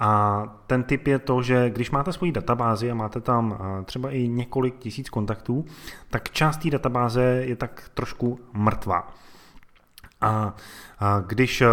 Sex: male